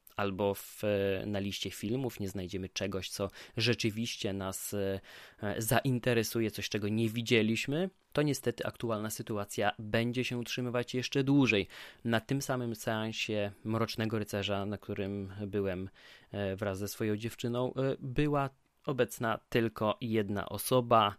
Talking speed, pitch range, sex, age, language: 120 wpm, 105-125 Hz, male, 20-39, Polish